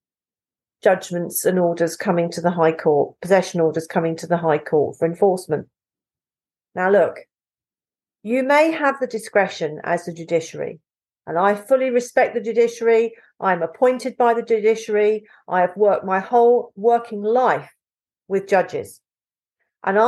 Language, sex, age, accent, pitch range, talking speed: English, female, 50-69, British, 170-235 Hz, 145 wpm